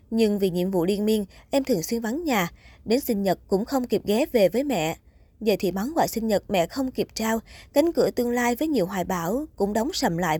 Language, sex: Vietnamese, female